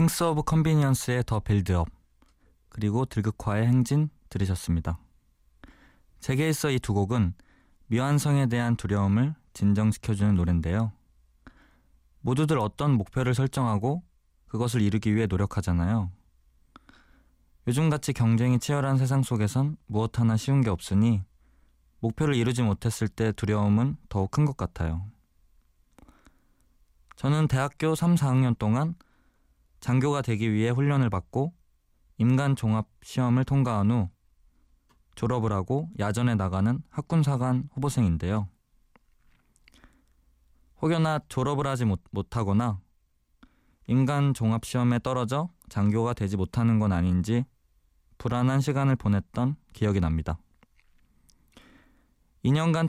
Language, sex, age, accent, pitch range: Korean, male, 20-39, native, 90-130 Hz